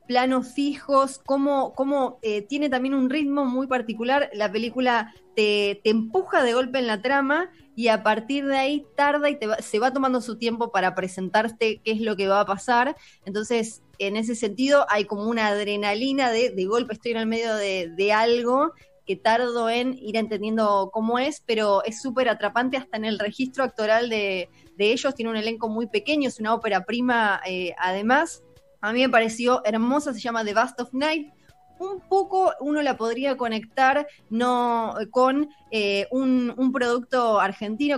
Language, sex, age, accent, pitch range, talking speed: Spanish, female, 20-39, Argentinian, 215-265 Hz, 185 wpm